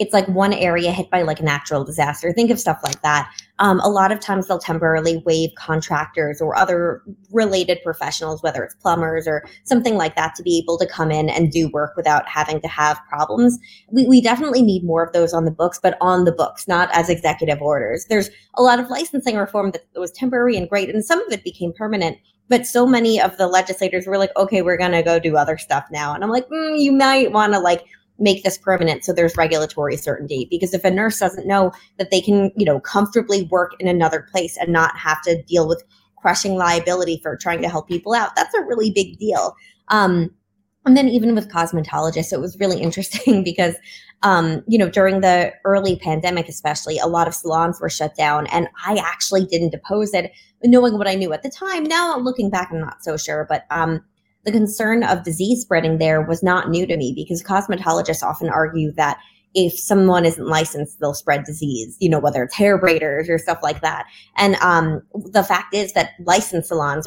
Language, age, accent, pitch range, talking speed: English, 20-39, American, 160-200 Hz, 215 wpm